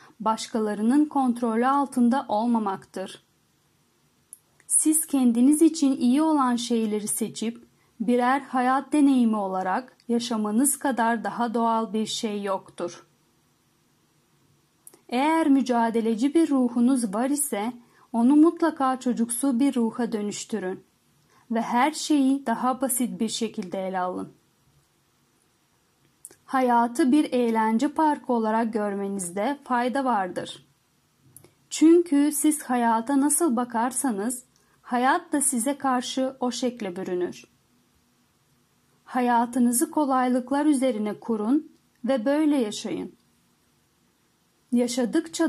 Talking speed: 95 wpm